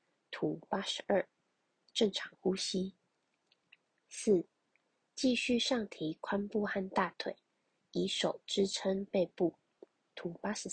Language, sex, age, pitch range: Chinese, female, 20-39, 175-220 Hz